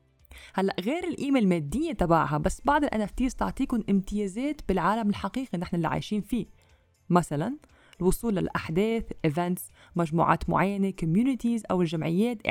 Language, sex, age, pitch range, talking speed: English, female, 20-39, 175-240 Hz, 120 wpm